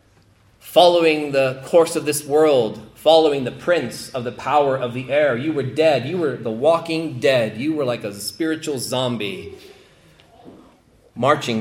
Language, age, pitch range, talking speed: English, 30-49, 115-175 Hz, 155 wpm